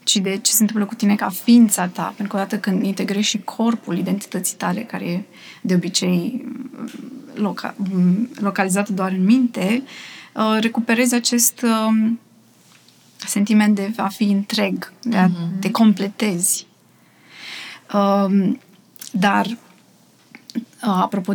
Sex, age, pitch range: female, 20-39, 190-230 Hz